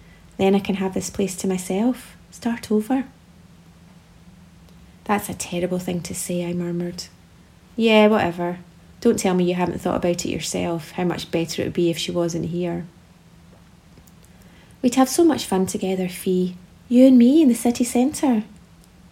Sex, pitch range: female, 180-255 Hz